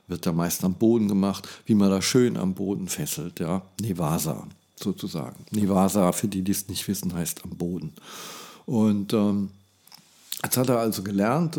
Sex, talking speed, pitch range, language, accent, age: male, 170 wpm, 95-115 Hz, German, German, 50-69